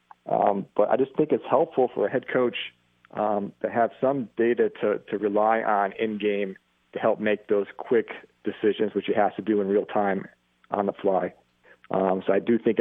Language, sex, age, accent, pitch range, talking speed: English, male, 40-59, American, 100-120 Hz, 200 wpm